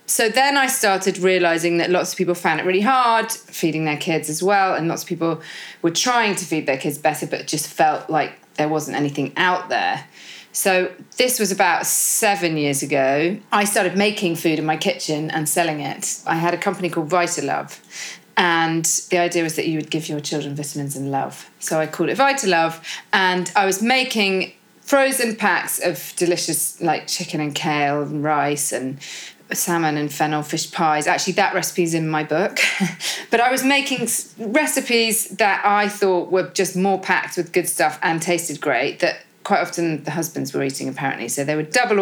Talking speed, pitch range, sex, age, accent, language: 195 wpm, 155-195 Hz, female, 30-49, British, English